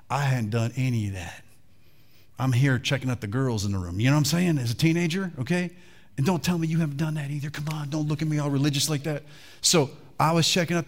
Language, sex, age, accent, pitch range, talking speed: English, male, 40-59, American, 130-180 Hz, 265 wpm